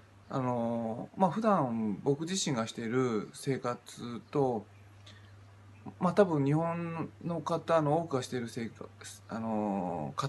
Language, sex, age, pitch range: Japanese, male, 20-39, 105-130 Hz